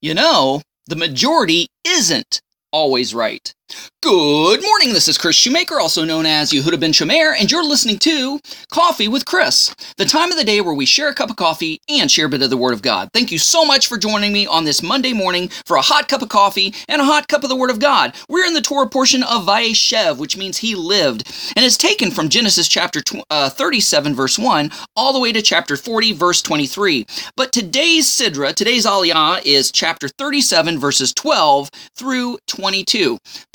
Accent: American